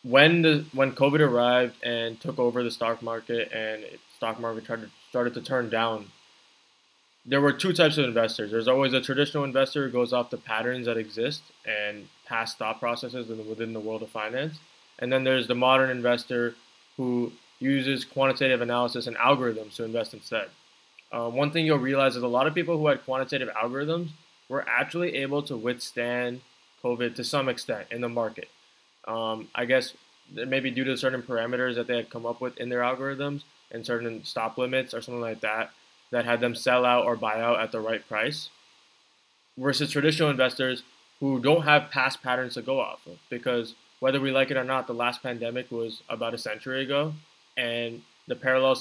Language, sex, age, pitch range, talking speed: English, male, 20-39, 115-135 Hz, 195 wpm